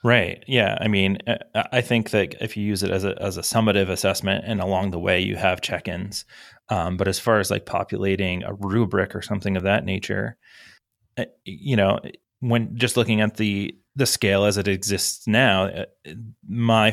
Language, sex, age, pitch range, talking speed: English, male, 30-49, 95-105 Hz, 185 wpm